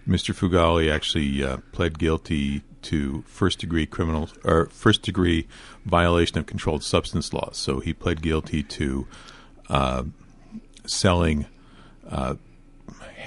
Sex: male